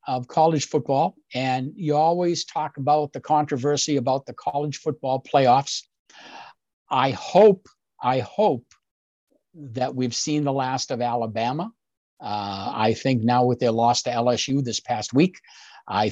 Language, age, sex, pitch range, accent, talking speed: English, 60-79, male, 125-155 Hz, American, 145 wpm